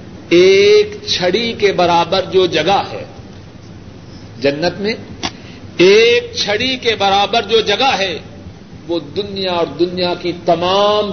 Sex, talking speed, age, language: male, 120 wpm, 50-69, Urdu